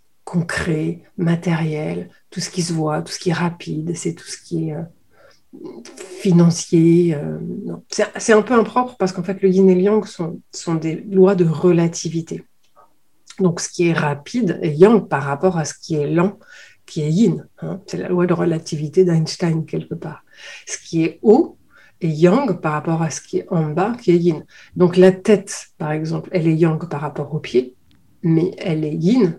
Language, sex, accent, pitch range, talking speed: French, female, French, 160-195 Hz, 200 wpm